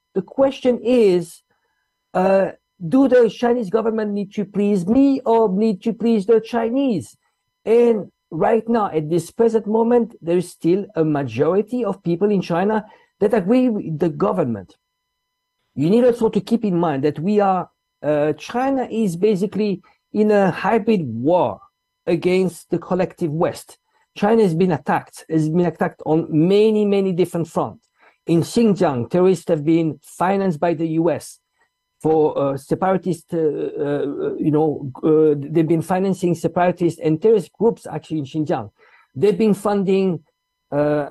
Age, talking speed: 50-69, 150 wpm